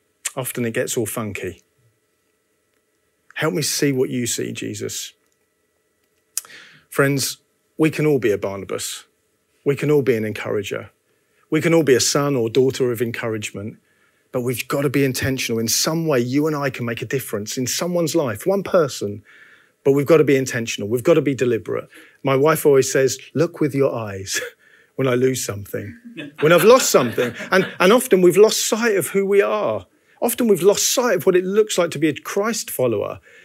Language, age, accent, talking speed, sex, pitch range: English, 40-59, British, 190 wpm, male, 130-195 Hz